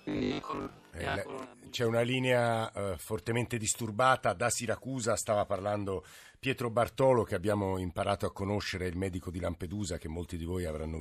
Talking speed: 140 wpm